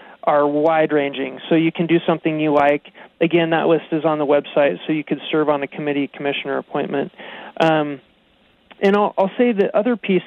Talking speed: 200 wpm